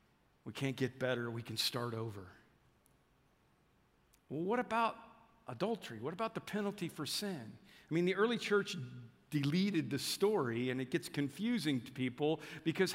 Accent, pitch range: American, 125-175 Hz